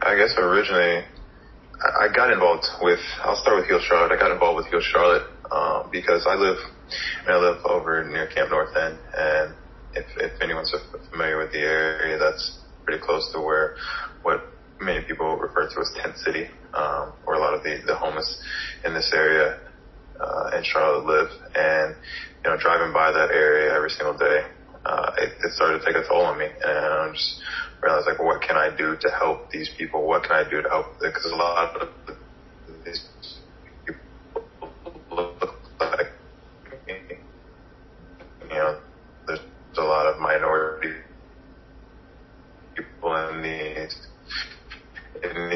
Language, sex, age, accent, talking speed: English, male, 20-39, American, 170 wpm